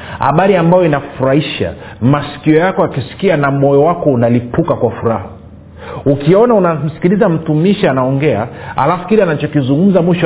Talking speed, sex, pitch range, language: 115 wpm, male, 100-160 Hz, Swahili